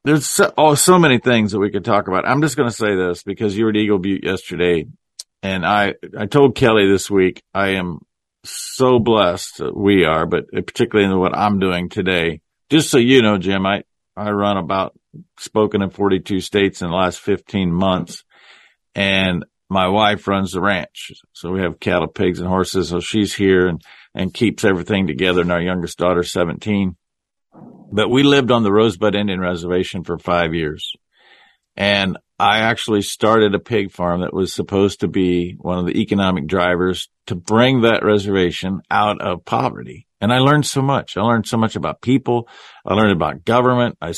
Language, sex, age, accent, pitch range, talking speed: English, male, 50-69, American, 95-120 Hz, 190 wpm